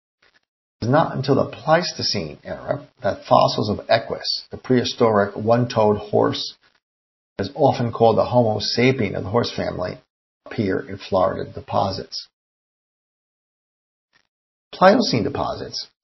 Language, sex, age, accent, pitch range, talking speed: English, male, 50-69, American, 100-125 Hz, 110 wpm